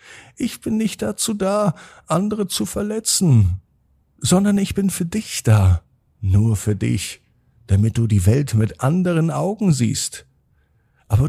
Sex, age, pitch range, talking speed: male, 50-69, 100-160 Hz, 140 wpm